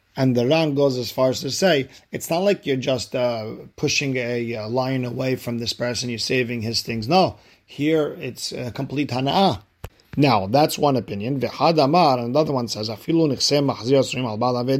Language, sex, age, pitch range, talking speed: English, male, 40-59, 115-140 Hz, 165 wpm